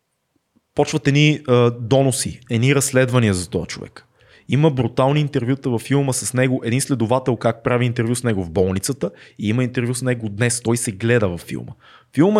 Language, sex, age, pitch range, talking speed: Bulgarian, male, 20-39, 110-130 Hz, 180 wpm